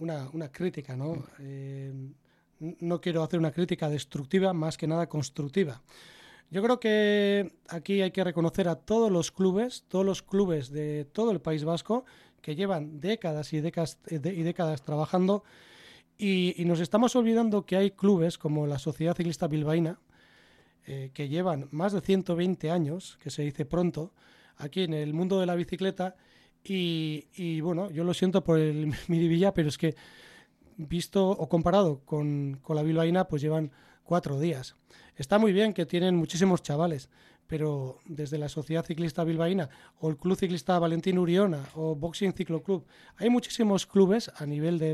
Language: Spanish